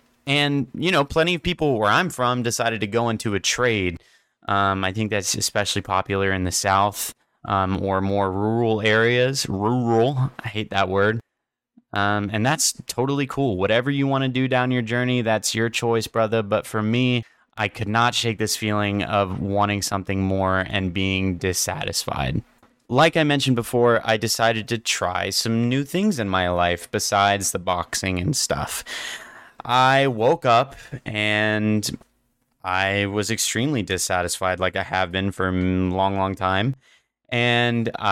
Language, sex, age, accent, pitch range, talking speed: English, male, 20-39, American, 100-125 Hz, 165 wpm